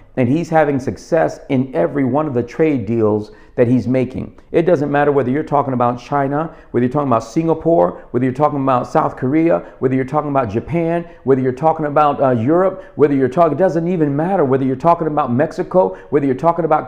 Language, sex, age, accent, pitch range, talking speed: English, male, 50-69, American, 125-165 Hz, 215 wpm